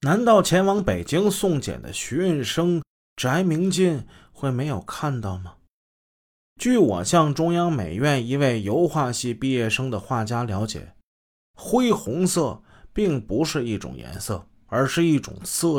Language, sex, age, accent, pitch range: Chinese, male, 30-49, native, 105-165 Hz